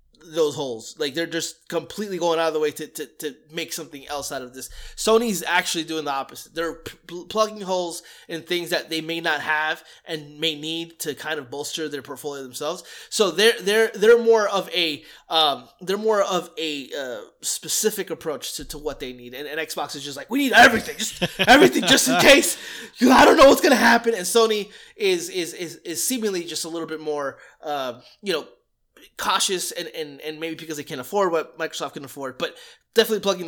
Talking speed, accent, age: 210 wpm, American, 20-39